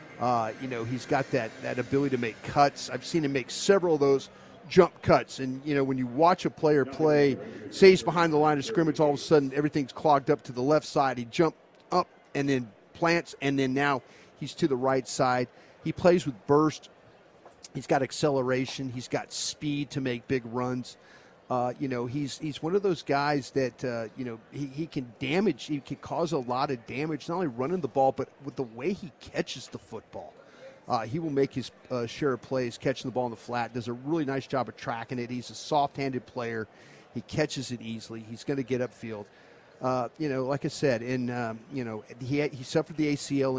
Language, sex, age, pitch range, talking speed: English, male, 40-59, 125-150 Hz, 225 wpm